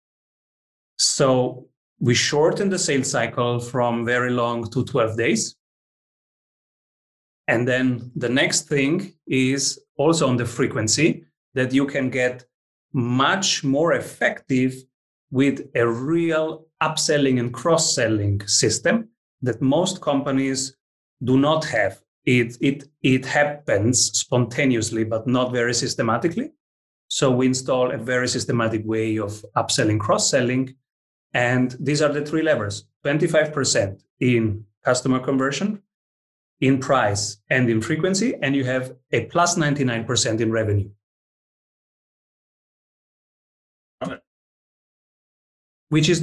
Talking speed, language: 110 wpm, English